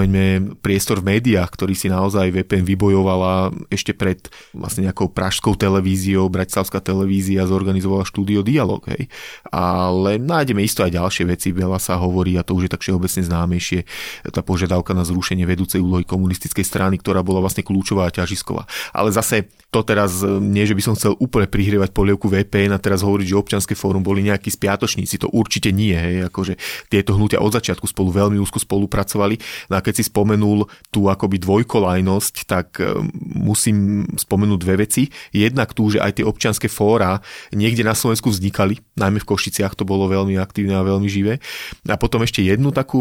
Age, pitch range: 30-49, 95-105 Hz